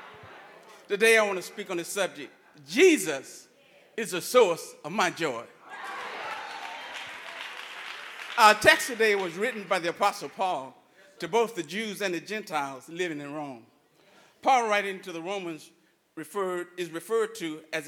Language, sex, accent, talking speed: English, male, American, 150 wpm